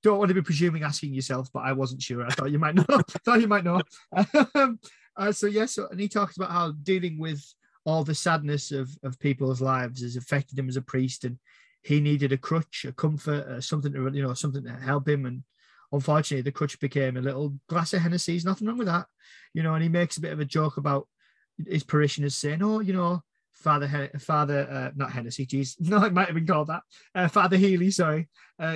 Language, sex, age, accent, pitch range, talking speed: English, male, 20-39, British, 140-185 Hz, 235 wpm